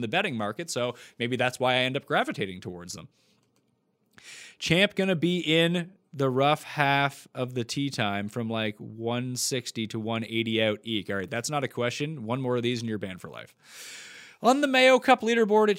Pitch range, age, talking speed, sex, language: 115-155 Hz, 30-49, 200 wpm, male, English